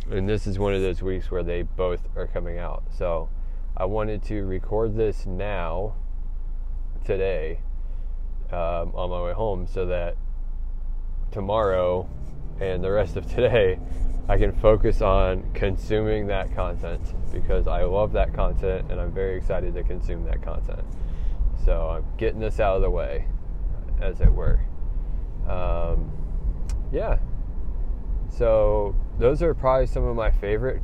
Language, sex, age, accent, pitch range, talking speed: English, male, 20-39, American, 85-105 Hz, 145 wpm